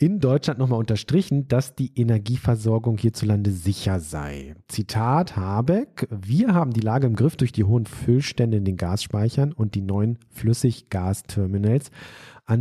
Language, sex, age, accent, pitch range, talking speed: German, male, 40-59, German, 110-140 Hz, 145 wpm